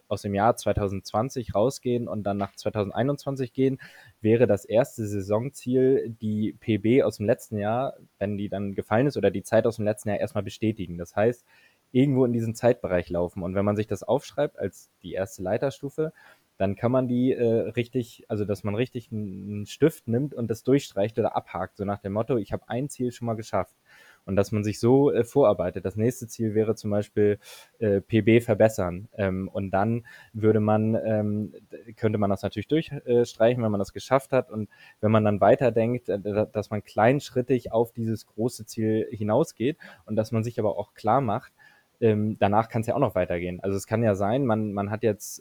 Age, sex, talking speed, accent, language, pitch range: 20-39, male, 195 wpm, German, German, 105-120 Hz